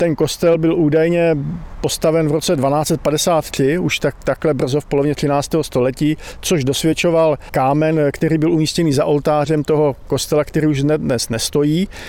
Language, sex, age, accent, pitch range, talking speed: Czech, male, 50-69, native, 140-160 Hz, 150 wpm